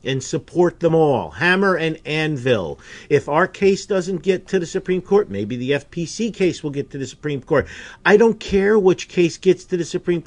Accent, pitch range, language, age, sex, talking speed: American, 145-180 Hz, English, 50-69, male, 205 wpm